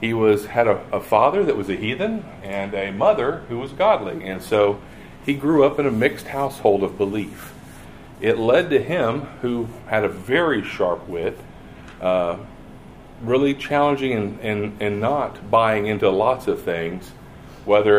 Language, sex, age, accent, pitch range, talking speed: English, male, 50-69, American, 100-130 Hz, 165 wpm